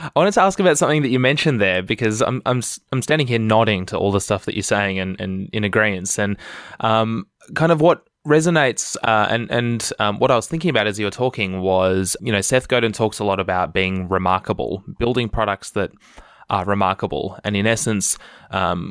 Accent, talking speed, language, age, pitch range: Australian, 220 wpm, English, 20-39, 100-125 Hz